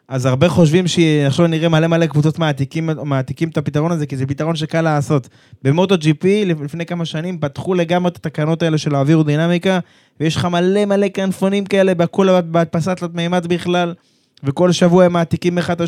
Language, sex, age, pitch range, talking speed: Hebrew, male, 20-39, 140-175 Hz, 170 wpm